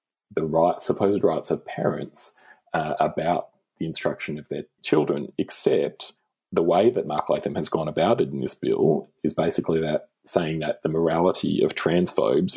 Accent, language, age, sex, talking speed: Australian, English, 30-49, male, 165 wpm